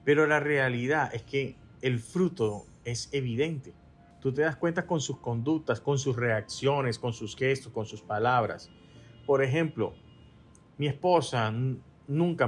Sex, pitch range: male, 115-155 Hz